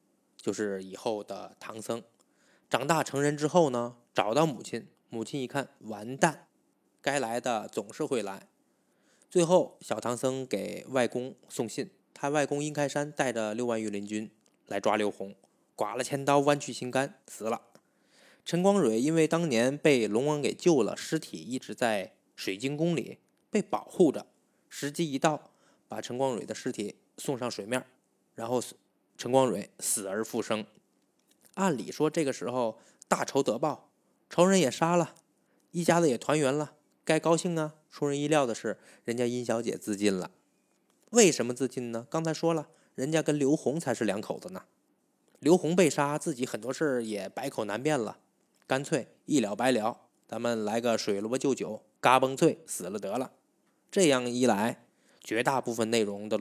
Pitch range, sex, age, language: 115-160 Hz, male, 20-39, Chinese